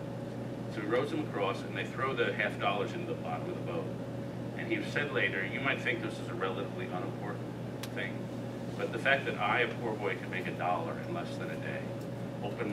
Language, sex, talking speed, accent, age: English, male, 225 wpm, American, 40-59